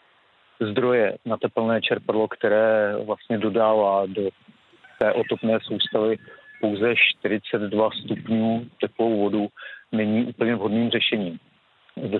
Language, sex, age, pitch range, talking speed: Czech, male, 50-69, 100-115 Hz, 105 wpm